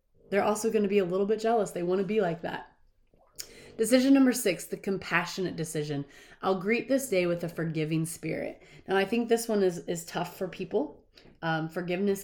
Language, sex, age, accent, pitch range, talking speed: English, female, 30-49, American, 160-195 Hz, 200 wpm